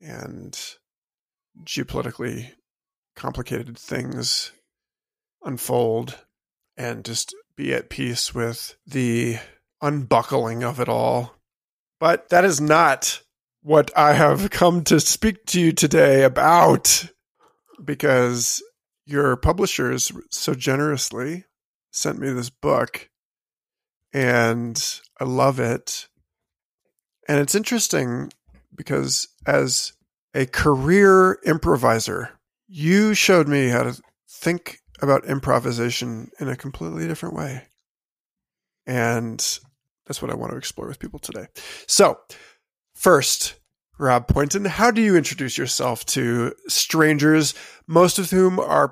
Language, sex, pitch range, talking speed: English, male, 125-180 Hz, 110 wpm